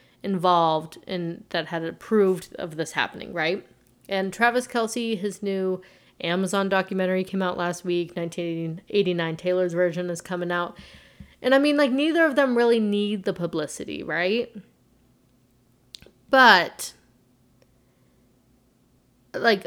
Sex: female